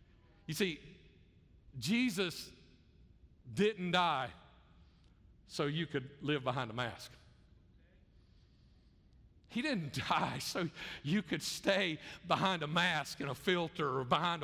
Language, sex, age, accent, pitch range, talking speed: English, male, 50-69, American, 160-230 Hz, 110 wpm